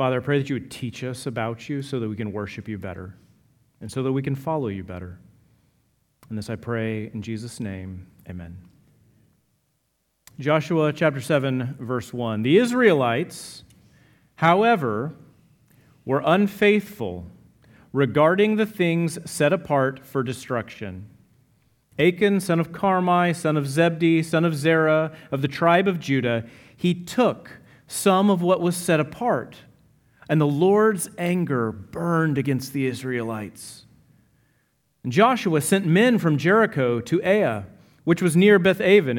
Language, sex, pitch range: English, male, 125-185 Hz